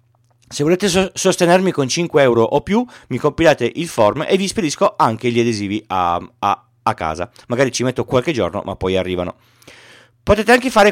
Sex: male